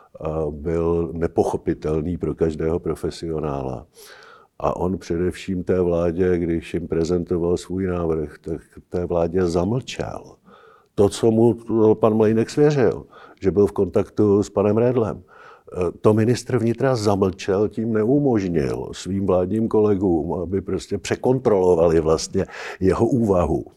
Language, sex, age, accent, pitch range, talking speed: Czech, male, 50-69, native, 85-100 Hz, 120 wpm